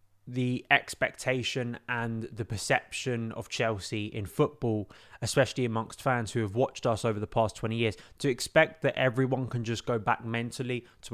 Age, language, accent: 20-39, English, British